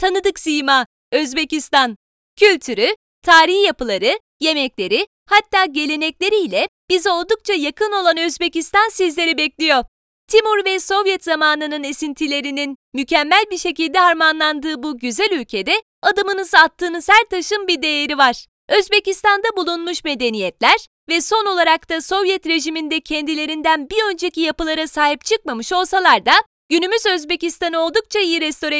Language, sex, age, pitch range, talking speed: Turkish, female, 30-49, 310-390 Hz, 120 wpm